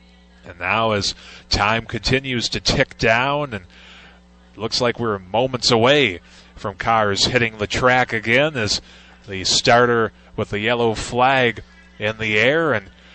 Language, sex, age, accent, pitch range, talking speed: English, male, 20-39, American, 100-125 Hz, 140 wpm